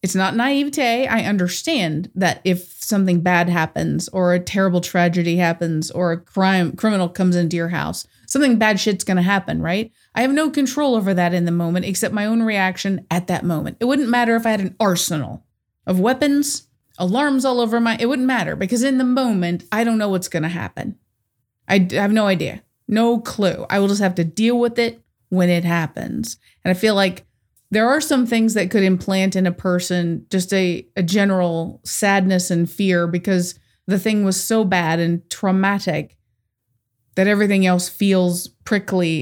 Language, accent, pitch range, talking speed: English, American, 175-230 Hz, 190 wpm